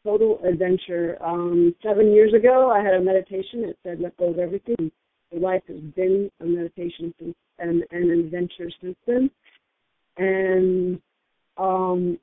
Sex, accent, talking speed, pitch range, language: female, American, 135 wpm, 170-190 Hz, English